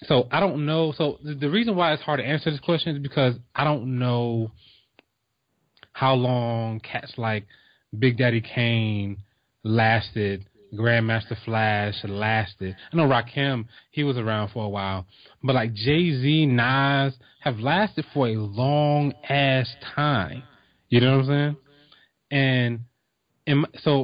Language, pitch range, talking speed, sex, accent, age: English, 115-145 Hz, 140 wpm, male, American, 20-39